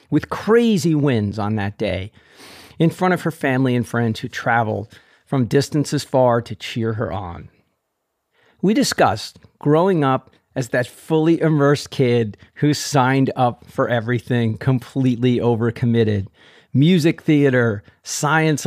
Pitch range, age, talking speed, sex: 115-150 Hz, 40-59, 130 wpm, male